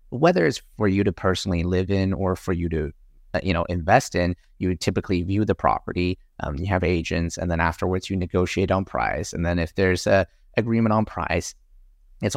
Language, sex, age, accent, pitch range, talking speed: English, male, 30-49, American, 90-100 Hz, 205 wpm